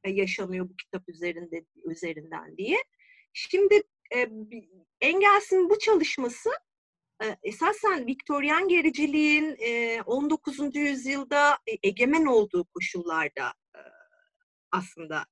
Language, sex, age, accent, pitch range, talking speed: Turkish, female, 40-59, native, 230-365 Hz, 75 wpm